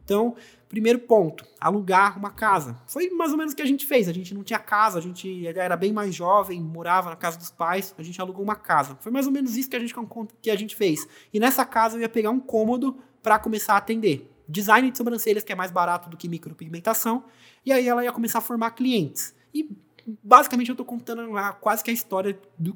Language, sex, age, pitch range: Portuguese, male, 20-39, 190-230 Hz